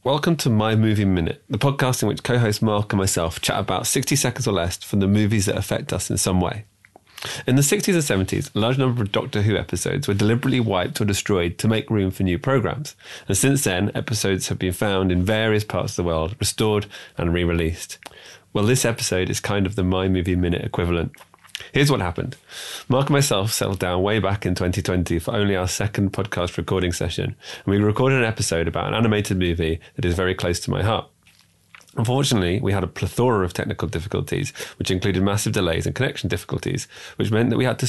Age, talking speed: 20-39, 210 wpm